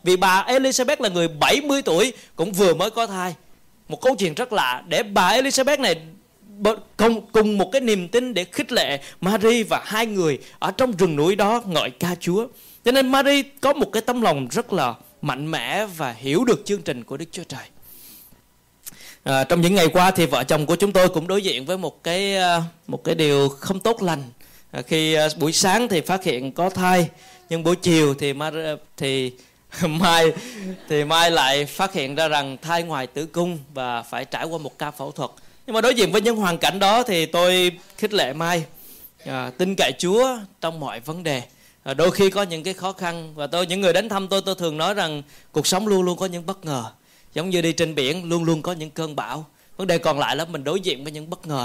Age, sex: 20-39, male